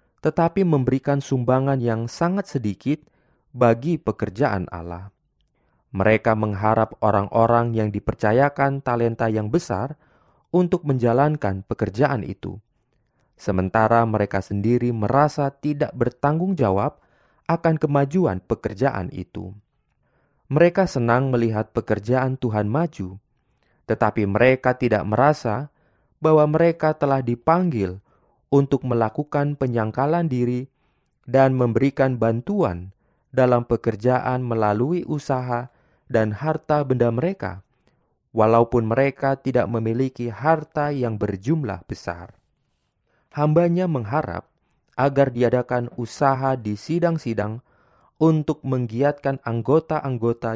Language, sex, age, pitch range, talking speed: Indonesian, male, 20-39, 110-145 Hz, 95 wpm